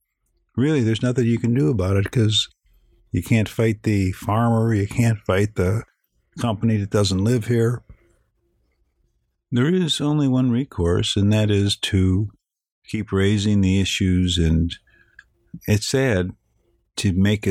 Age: 50-69